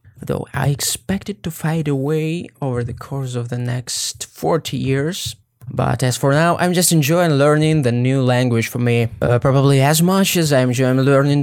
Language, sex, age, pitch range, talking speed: English, male, 20-39, 125-150 Hz, 190 wpm